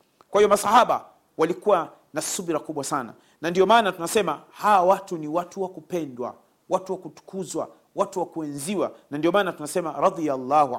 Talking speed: 160 wpm